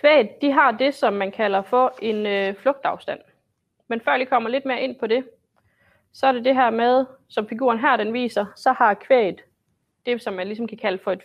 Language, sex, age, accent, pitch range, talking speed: Danish, female, 30-49, native, 195-250 Hz, 225 wpm